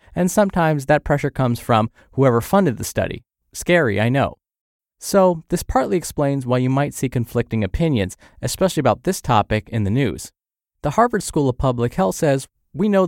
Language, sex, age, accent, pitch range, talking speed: English, male, 20-39, American, 110-155 Hz, 180 wpm